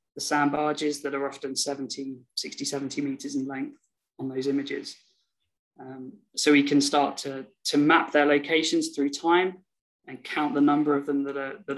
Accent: British